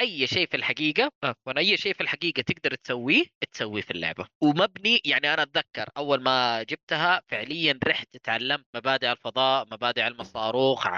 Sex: female